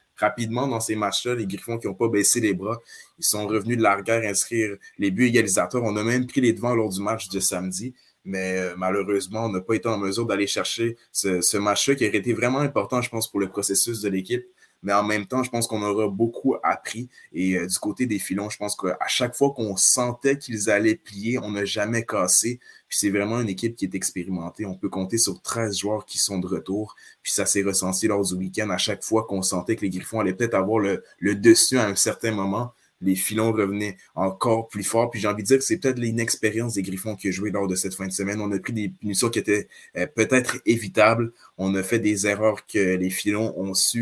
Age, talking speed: 20-39, 240 wpm